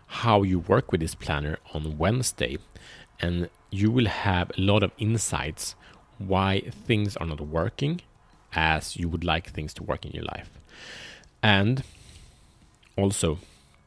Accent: Norwegian